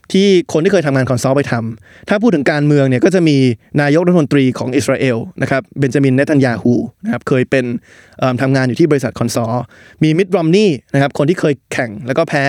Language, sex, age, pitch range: Thai, male, 20-39, 125-165 Hz